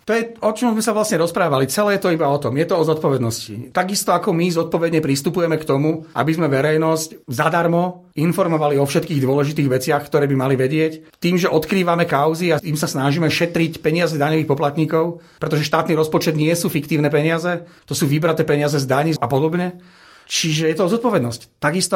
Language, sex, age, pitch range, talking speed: Slovak, male, 40-59, 145-165 Hz, 190 wpm